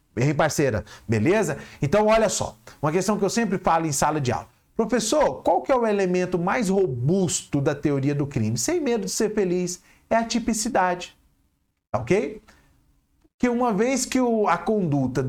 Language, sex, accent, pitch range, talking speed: Portuguese, male, Brazilian, 140-215 Hz, 175 wpm